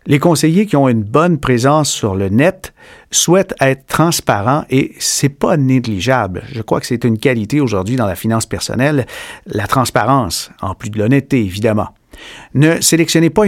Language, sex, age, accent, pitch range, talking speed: French, male, 50-69, Canadian, 120-155 Hz, 170 wpm